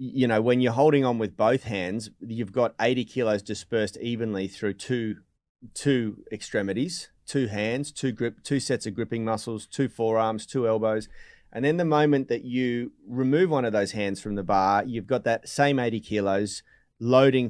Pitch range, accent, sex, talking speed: 105-130 Hz, Australian, male, 180 wpm